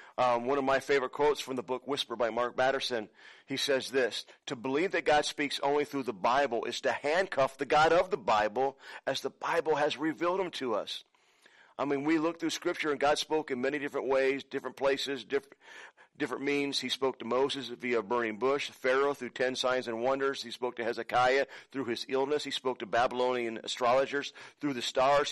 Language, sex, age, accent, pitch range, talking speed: English, male, 40-59, American, 125-145 Hz, 205 wpm